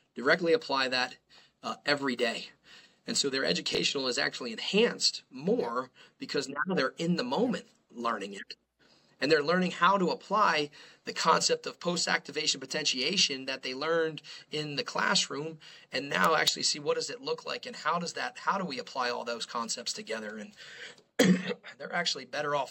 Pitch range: 135-195 Hz